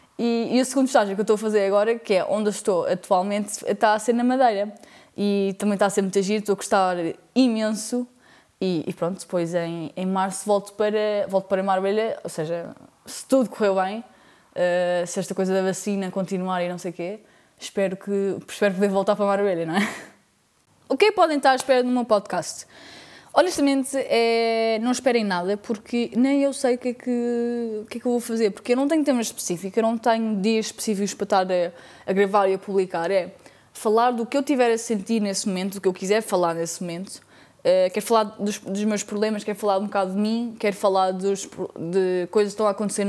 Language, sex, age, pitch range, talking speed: Portuguese, female, 20-39, 190-230 Hz, 215 wpm